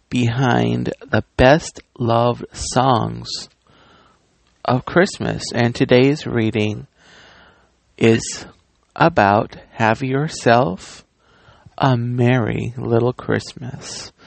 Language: English